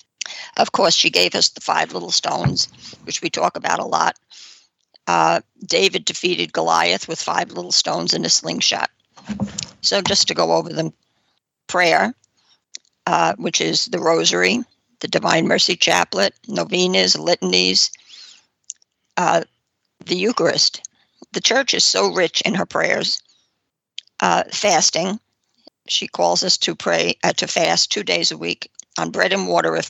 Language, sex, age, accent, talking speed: English, female, 60-79, American, 150 wpm